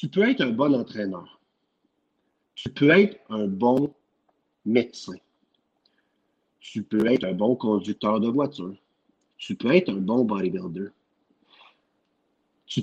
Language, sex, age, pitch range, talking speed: French, male, 50-69, 105-150 Hz, 125 wpm